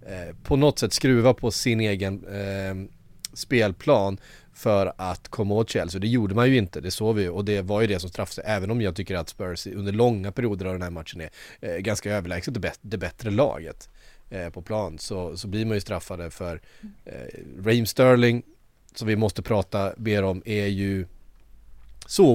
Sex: male